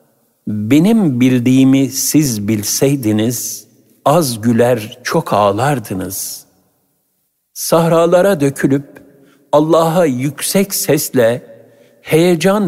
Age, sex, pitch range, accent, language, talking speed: 60-79, male, 110-145 Hz, native, Turkish, 65 wpm